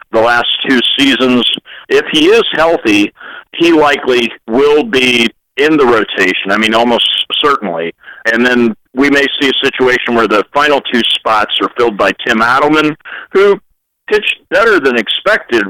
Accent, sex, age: American, male, 50-69